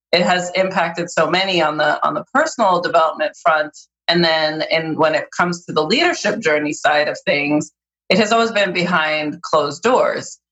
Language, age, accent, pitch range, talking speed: English, 30-49, American, 155-190 Hz, 185 wpm